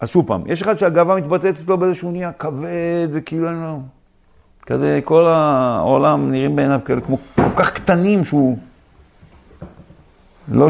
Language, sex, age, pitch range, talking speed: Hebrew, male, 50-69, 125-190 Hz, 140 wpm